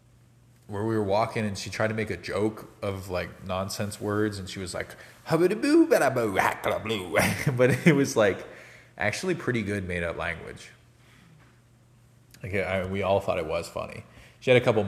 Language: English